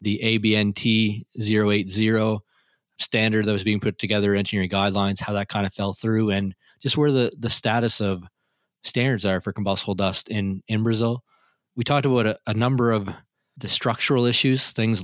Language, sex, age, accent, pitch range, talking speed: English, male, 20-39, American, 100-115 Hz, 170 wpm